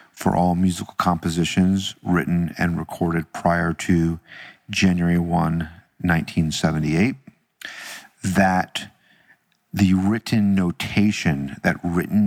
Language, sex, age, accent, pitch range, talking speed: English, male, 50-69, American, 85-95 Hz, 90 wpm